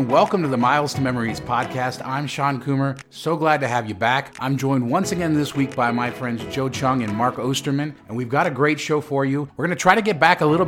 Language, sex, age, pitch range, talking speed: English, male, 30-49, 115-145 Hz, 265 wpm